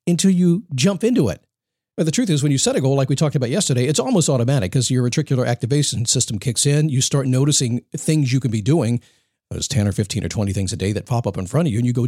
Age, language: 50-69, English